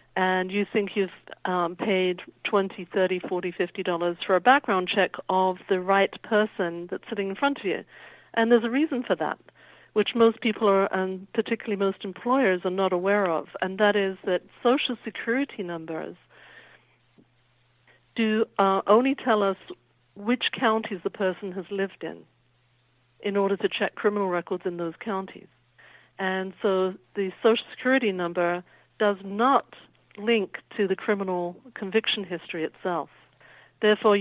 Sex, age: female, 60-79